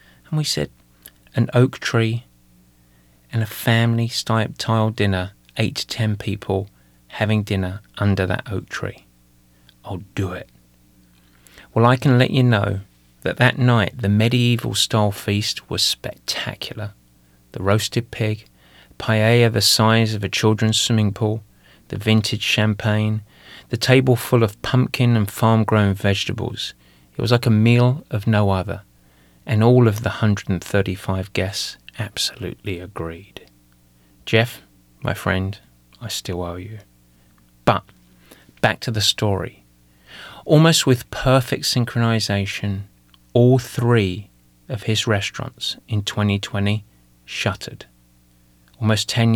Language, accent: English, British